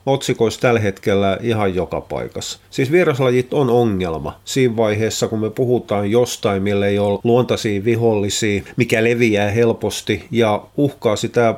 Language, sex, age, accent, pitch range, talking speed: Finnish, male, 30-49, native, 105-125 Hz, 140 wpm